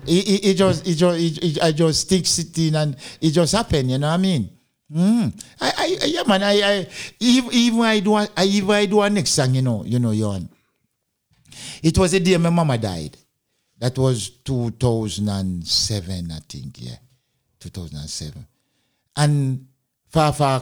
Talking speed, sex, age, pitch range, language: 170 wpm, male, 60-79, 105-140 Hz, Danish